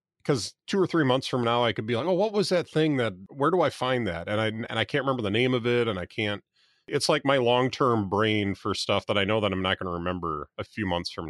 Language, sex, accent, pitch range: English, male, American, 90-115 Hz